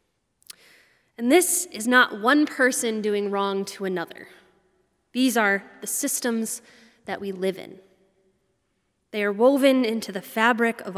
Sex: female